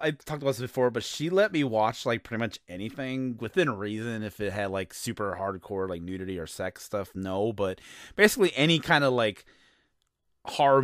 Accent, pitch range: American, 105-145 Hz